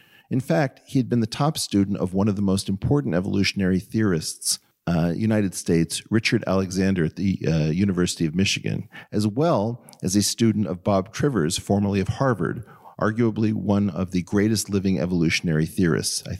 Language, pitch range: English, 90-110 Hz